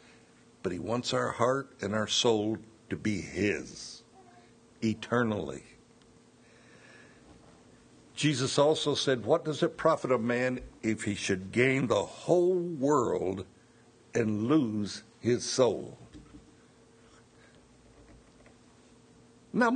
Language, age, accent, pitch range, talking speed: English, 60-79, American, 110-135 Hz, 100 wpm